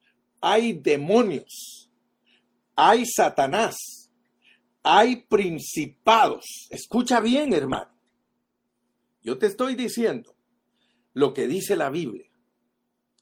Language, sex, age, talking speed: Spanish, male, 50-69, 80 wpm